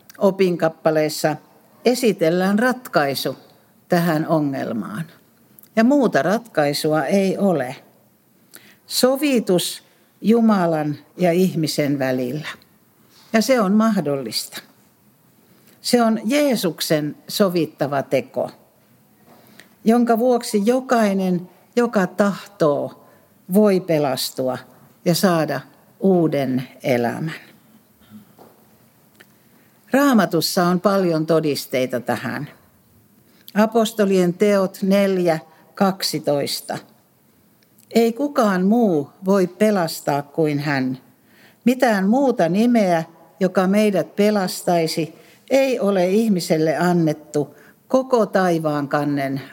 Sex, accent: female, native